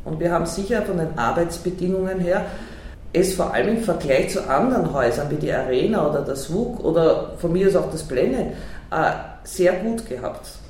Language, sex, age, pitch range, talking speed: German, female, 40-59, 155-185 Hz, 180 wpm